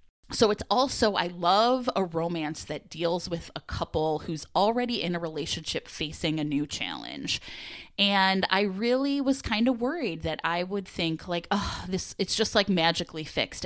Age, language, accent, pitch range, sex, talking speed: 20-39, English, American, 165-230 Hz, female, 175 wpm